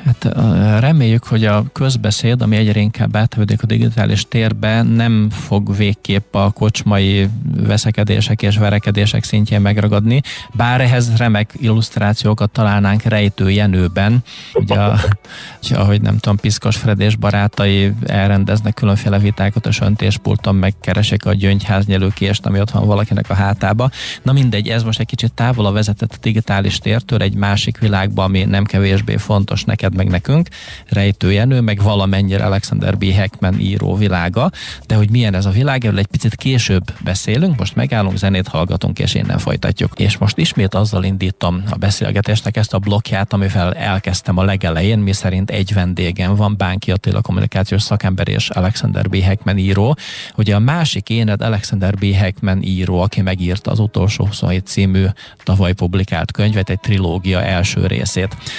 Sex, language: male, Hungarian